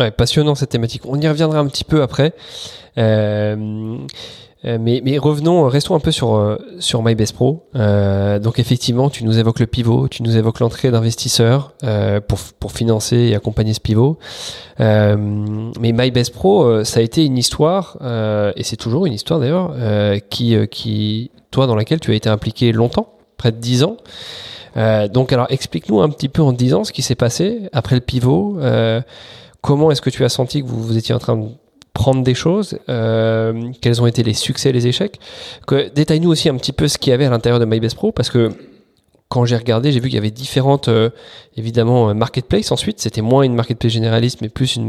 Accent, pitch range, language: French, 110-135 Hz, English